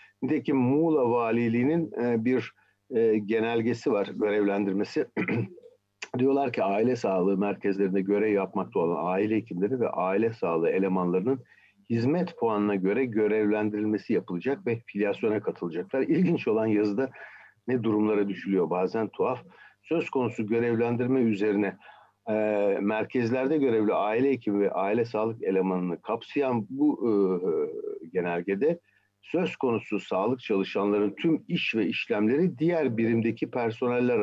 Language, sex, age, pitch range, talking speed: Turkish, male, 60-79, 100-125 Hz, 115 wpm